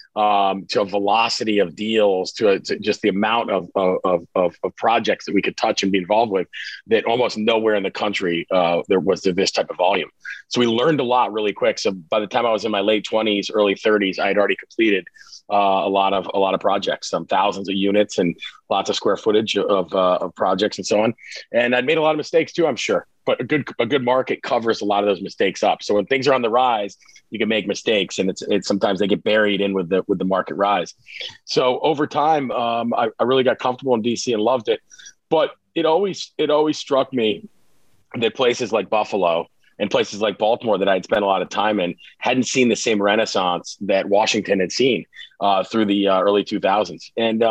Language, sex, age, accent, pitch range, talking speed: English, male, 30-49, American, 100-125 Hz, 235 wpm